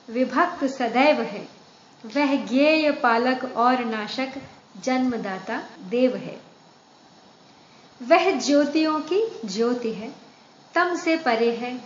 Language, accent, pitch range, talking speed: Hindi, native, 230-300 Hz, 100 wpm